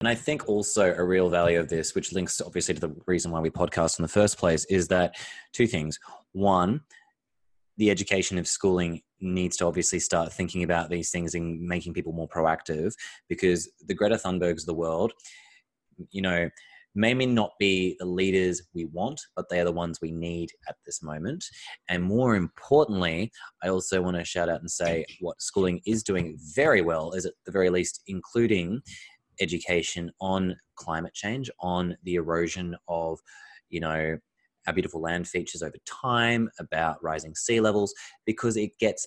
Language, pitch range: English, 85-95 Hz